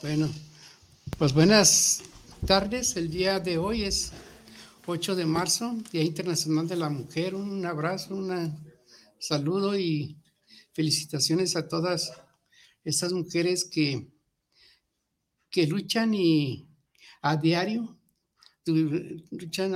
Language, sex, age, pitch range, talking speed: Spanish, male, 60-79, 150-185 Hz, 105 wpm